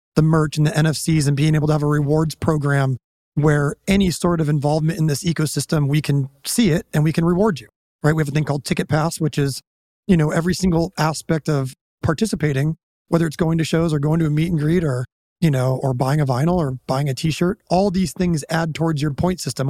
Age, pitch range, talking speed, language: 30-49, 150-180 Hz, 240 wpm, English